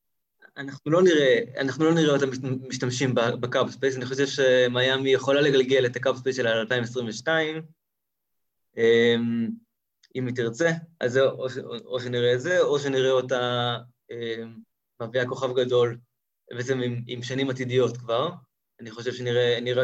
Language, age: Hebrew, 20-39